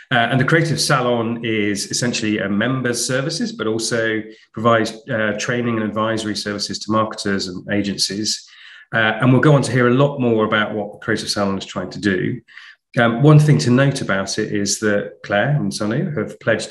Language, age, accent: English, 30-49, British